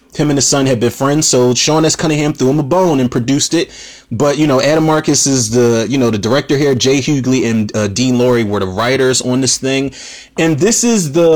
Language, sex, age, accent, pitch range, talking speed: English, male, 30-49, American, 110-140 Hz, 245 wpm